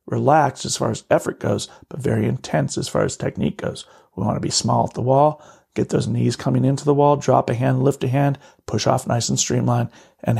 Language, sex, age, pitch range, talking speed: English, male, 40-59, 120-140 Hz, 235 wpm